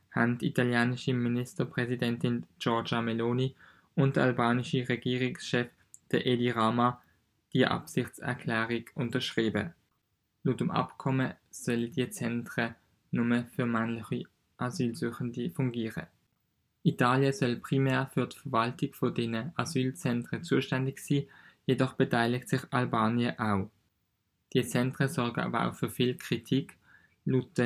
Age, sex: 20-39, male